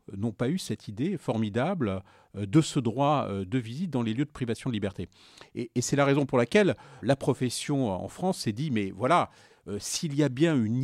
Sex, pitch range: male, 105-140 Hz